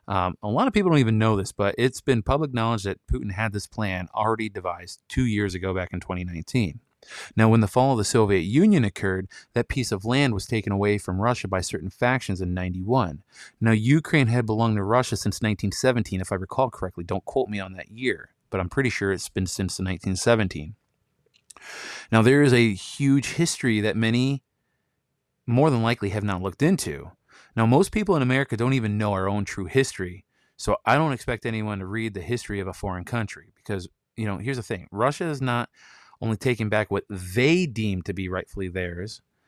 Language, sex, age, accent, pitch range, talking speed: English, male, 30-49, American, 95-120 Hz, 205 wpm